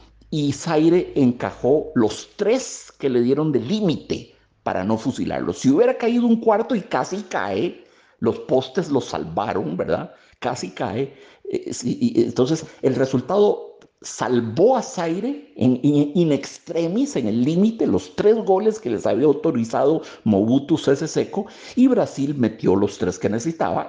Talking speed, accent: 150 wpm, Mexican